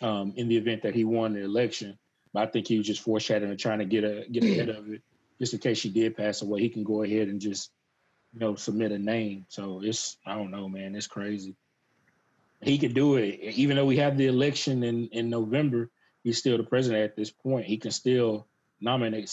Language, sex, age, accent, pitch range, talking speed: English, male, 20-39, American, 105-125 Hz, 230 wpm